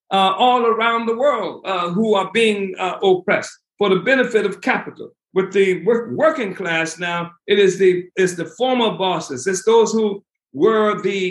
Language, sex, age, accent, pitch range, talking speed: English, male, 60-79, American, 170-215 Hz, 170 wpm